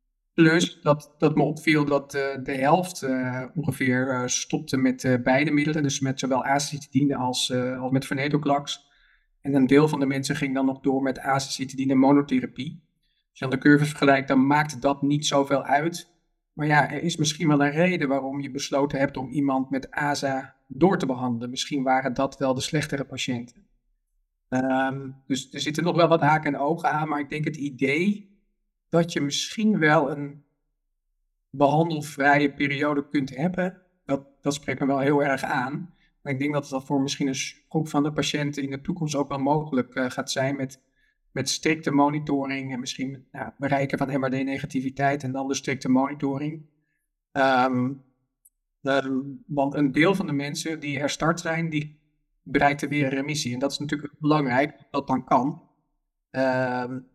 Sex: male